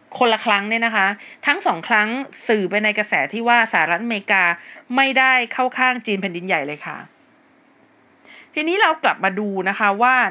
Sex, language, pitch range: female, Thai, 195-265 Hz